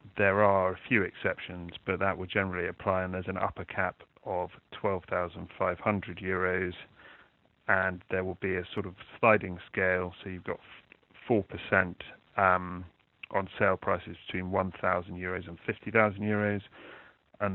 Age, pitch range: 30-49, 90-100 Hz